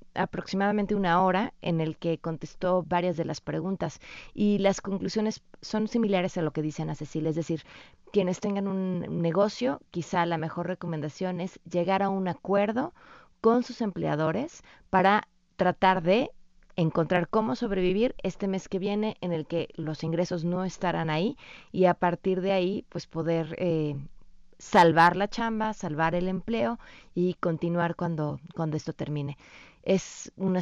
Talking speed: 155 wpm